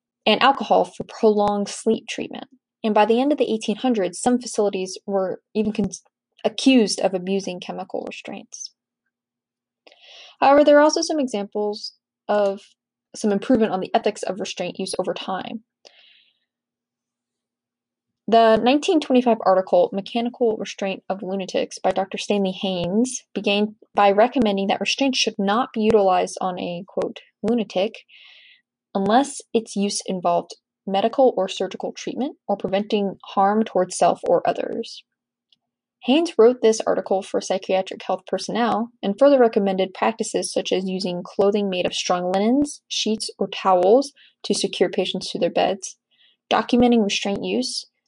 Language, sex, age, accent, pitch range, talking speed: English, female, 10-29, American, 195-240 Hz, 135 wpm